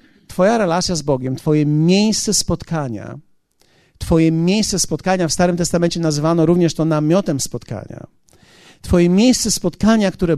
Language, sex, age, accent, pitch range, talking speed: Polish, male, 50-69, native, 160-215 Hz, 125 wpm